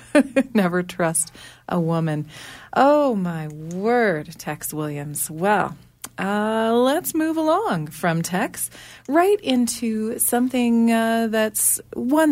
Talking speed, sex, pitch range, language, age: 105 wpm, female, 170-240 Hz, English, 30-49